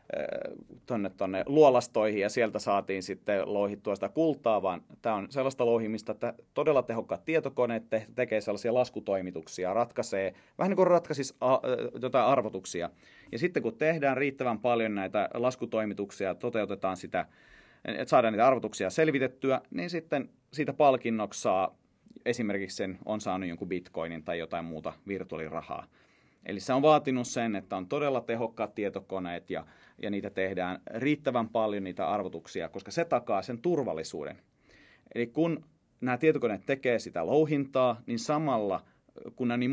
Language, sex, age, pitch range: Finnish, male, 30-49, 100-140 Hz